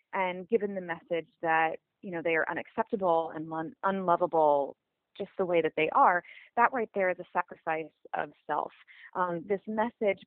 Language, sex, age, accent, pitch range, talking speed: English, female, 30-49, American, 165-235 Hz, 170 wpm